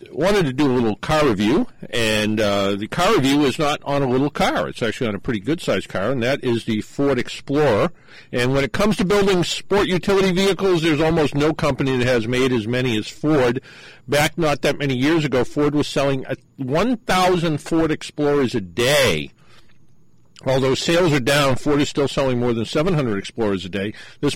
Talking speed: 195 wpm